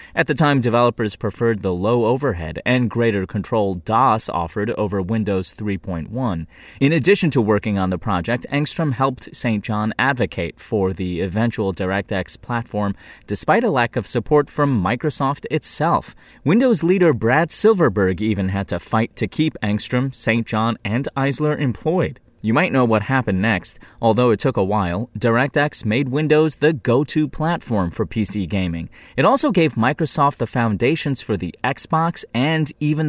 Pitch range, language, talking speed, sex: 100-140 Hz, English, 160 wpm, male